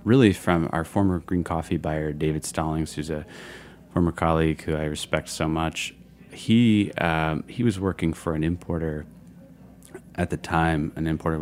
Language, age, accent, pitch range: English, 30-49, American, 80-90 Hz